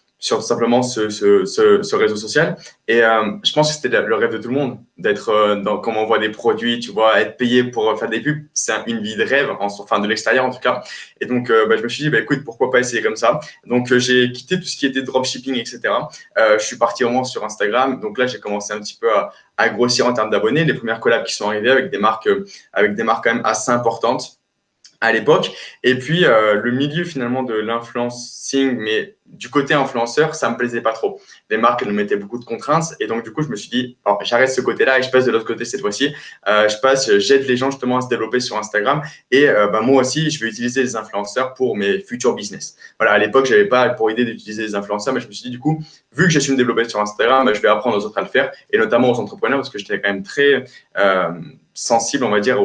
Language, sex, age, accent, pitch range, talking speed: French, male, 20-39, French, 115-150 Hz, 265 wpm